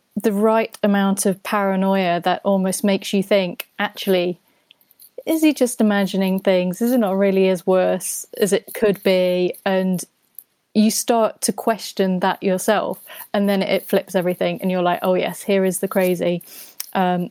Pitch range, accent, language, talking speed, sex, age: 180-205 Hz, British, English, 165 wpm, female, 30-49